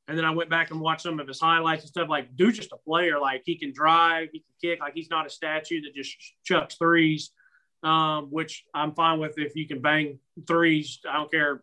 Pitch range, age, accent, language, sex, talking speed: 155-180 Hz, 30-49, American, English, male, 245 wpm